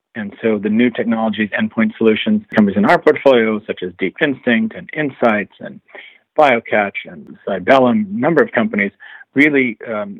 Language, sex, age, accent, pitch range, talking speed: English, male, 50-69, American, 110-145 Hz, 160 wpm